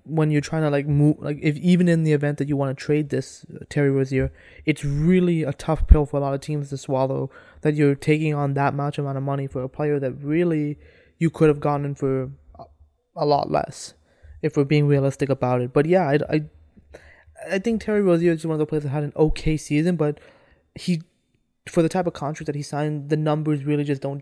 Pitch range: 140-175 Hz